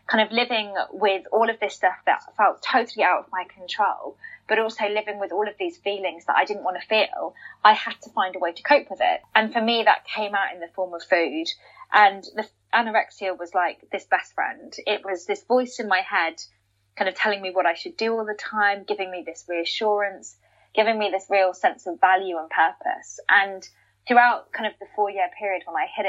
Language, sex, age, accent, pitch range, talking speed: English, female, 20-39, British, 185-220 Hz, 230 wpm